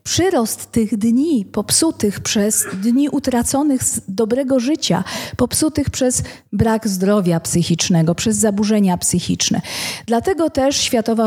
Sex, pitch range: female, 215-260 Hz